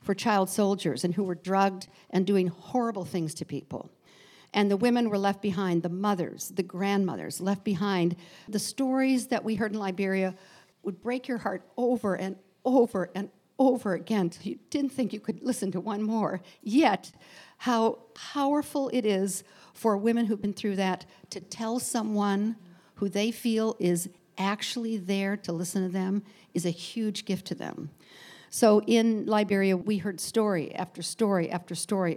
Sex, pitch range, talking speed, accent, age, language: female, 185-220 Hz, 170 wpm, American, 50-69, English